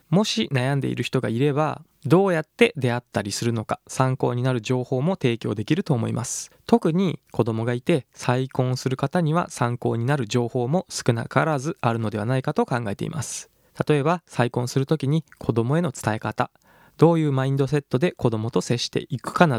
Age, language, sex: 20-39, Japanese, male